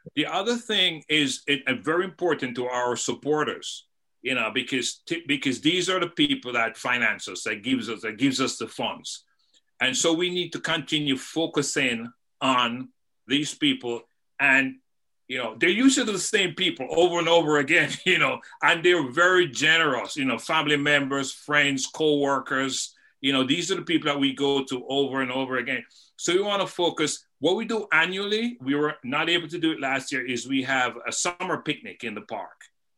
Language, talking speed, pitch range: English, 195 wpm, 130-175 Hz